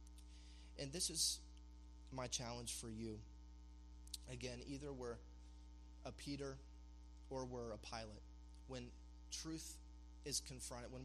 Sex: male